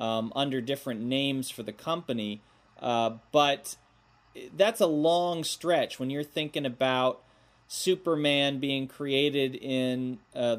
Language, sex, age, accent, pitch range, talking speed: English, male, 30-49, American, 115-140 Hz, 125 wpm